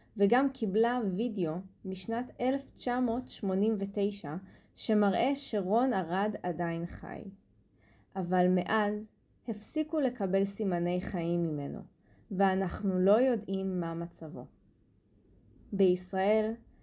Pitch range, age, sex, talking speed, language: 170-215 Hz, 20-39, female, 80 wpm, English